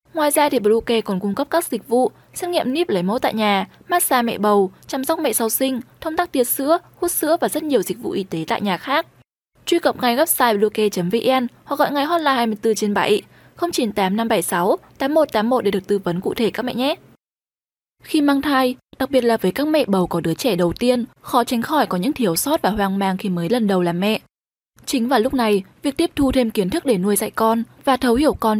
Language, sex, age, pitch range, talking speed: Vietnamese, female, 10-29, 200-280 Hz, 240 wpm